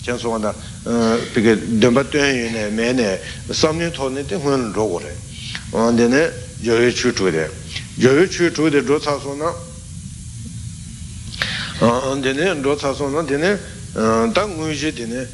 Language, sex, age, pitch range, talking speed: Italian, male, 60-79, 110-135 Hz, 45 wpm